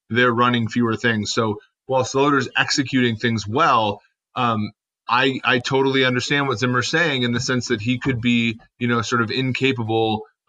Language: English